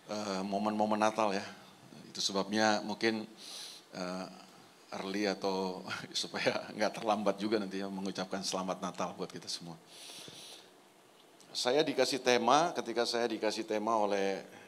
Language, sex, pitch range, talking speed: Indonesian, male, 100-125 Hz, 120 wpm